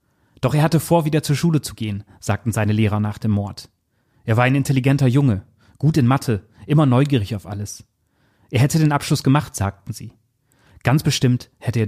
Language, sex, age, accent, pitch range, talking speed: German, male, 30-49, German, 105-130 Hz, 190 wpm